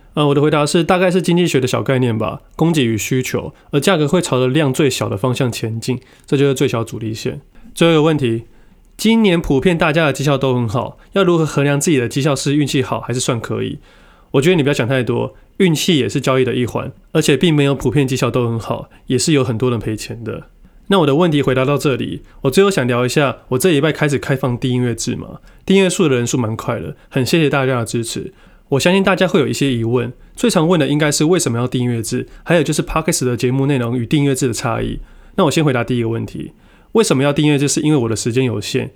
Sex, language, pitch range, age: male, Chinese, 125-150 Hz, 20-39